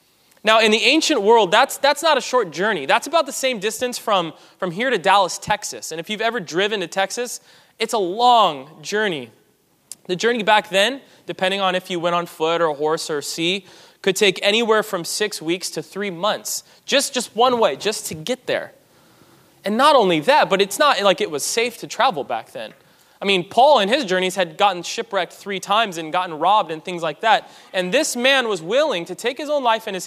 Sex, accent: male, American